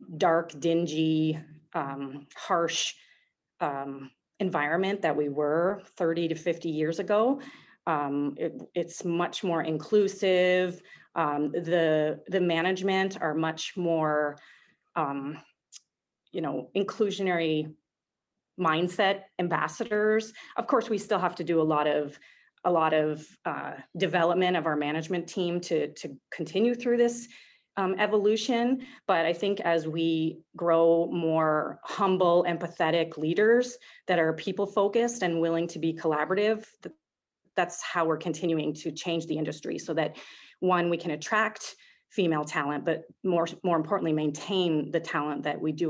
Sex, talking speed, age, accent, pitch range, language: female, 135 wpm, 30-49, American, 155-195 Hz, English